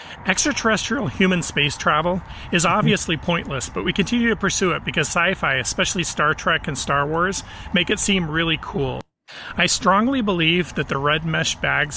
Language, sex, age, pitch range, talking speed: English, male, 40-59, 145-190 Hz, 170 wpm